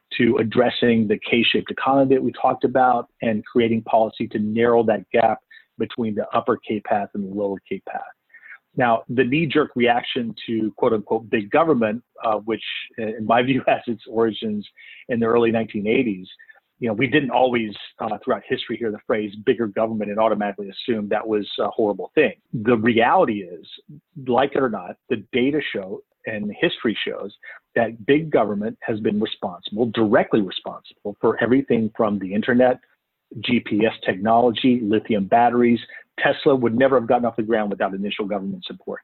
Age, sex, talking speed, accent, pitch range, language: 40-59, male, 165 wpm, American, 105-120 Hz, English